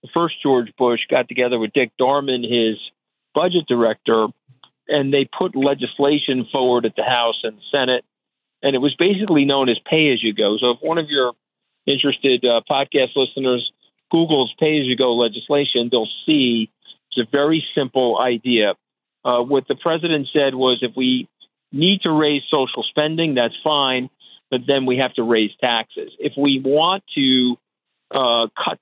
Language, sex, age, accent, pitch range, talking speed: English, male, 50-69, American, 120-145 Hz, 170 wpm